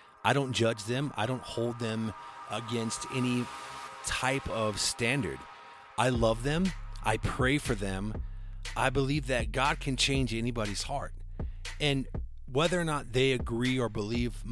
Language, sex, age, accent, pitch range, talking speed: English, male, 40-59, American, 100-130 Hz, 150 wpm